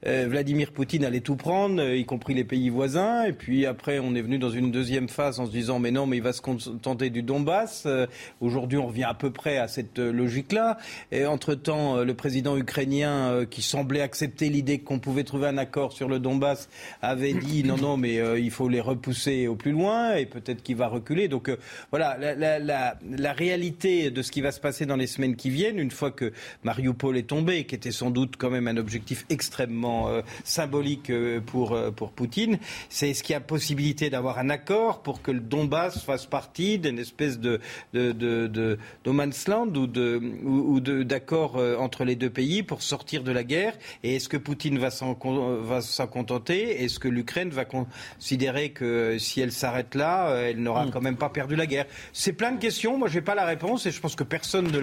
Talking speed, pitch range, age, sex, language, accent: 210 wpm, 125-150 Hz, 40-59, male, French, French